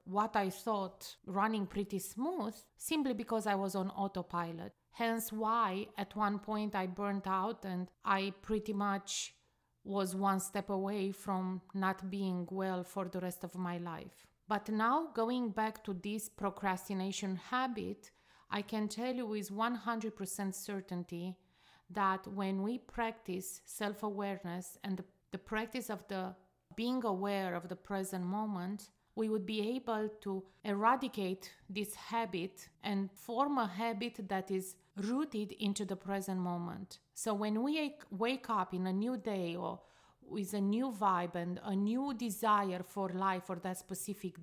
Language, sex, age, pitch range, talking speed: English, female, 30-49, 190-215 Hz, 150 wpm